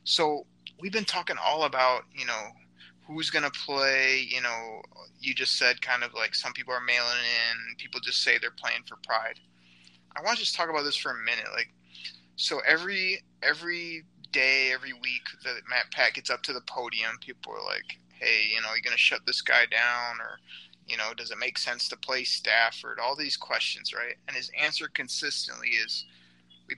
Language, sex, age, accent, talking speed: English, male, 20-39, American, 200 wpm